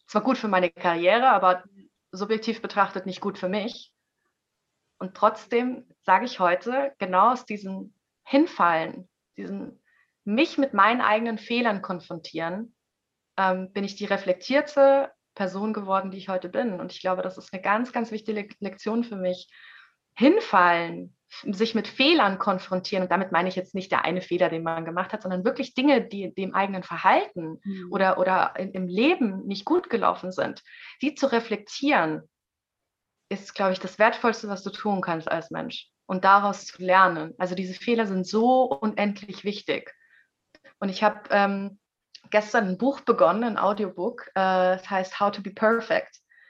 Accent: German